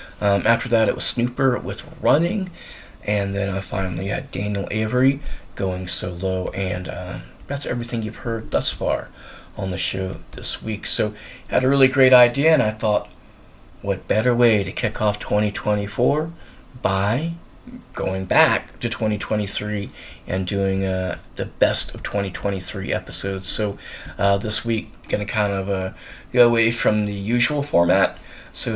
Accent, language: American, English